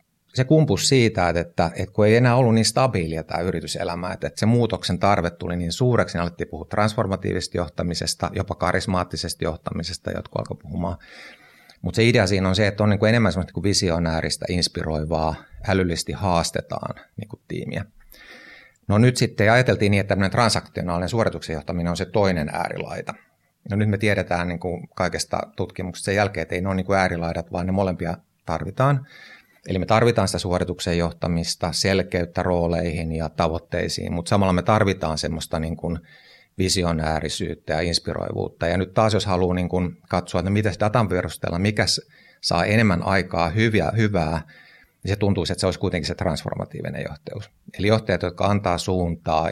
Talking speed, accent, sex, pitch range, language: 160 wpm, native, male, 85-105 Hz, Finnish